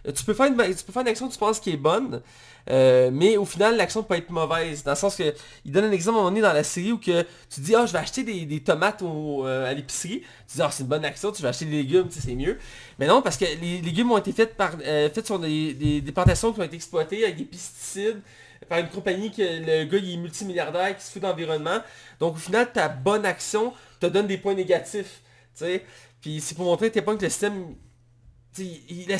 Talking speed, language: 270 wpm, French